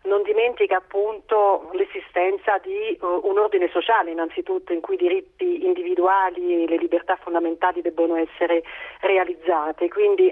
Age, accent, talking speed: 40-59, native, 130 wpm